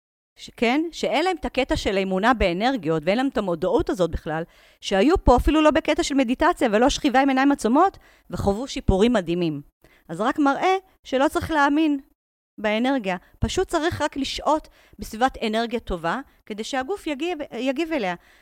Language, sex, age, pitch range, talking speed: Hebrew, female, 40-59, 200-310 Hz, 160 wpm